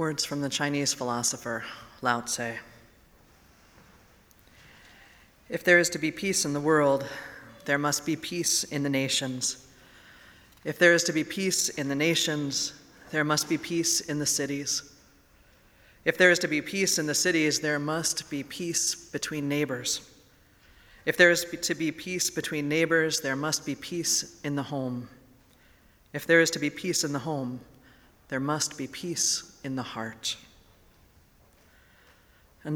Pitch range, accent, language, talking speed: 130-165 Hz, American, English, 160 wpm